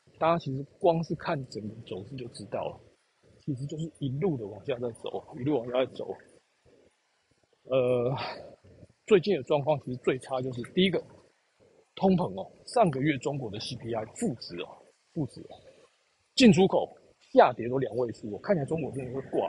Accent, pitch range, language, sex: native, 135-200 Hz, Chinese, male